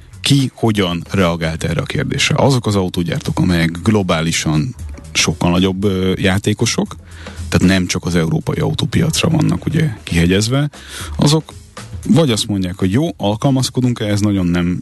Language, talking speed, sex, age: Hungarian, 140 wpm, male, 30-49